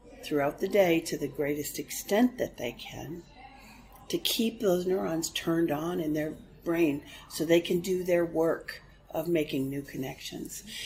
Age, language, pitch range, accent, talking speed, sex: 50-69, Polish, 150-180 Hz, American, 160 wpm, female